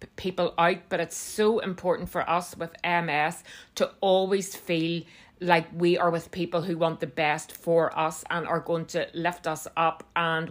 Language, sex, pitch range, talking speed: English, female, 160-180 Hz, 185 wpm